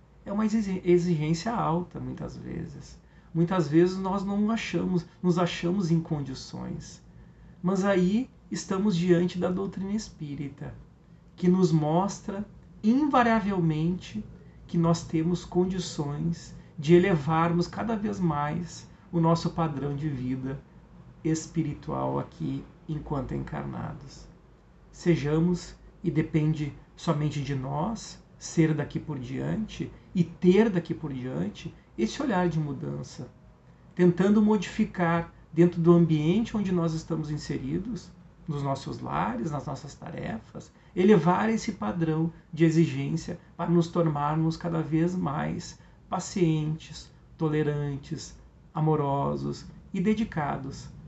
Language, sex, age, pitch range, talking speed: Portuguese, male, 40-59, 155-180 Hz, 110 wpm